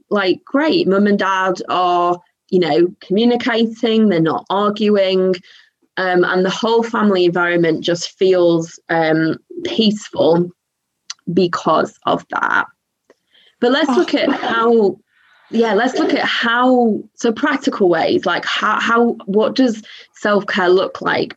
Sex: female